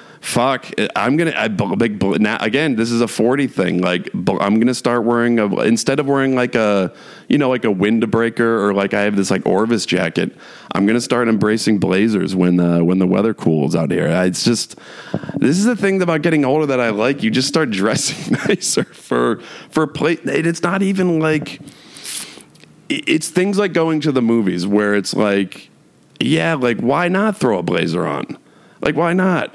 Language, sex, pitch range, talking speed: English, male, 95-135 Hz, 205 wpm